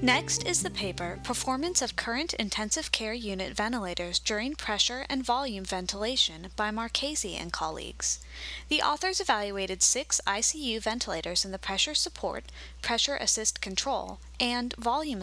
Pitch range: 180-260 Hz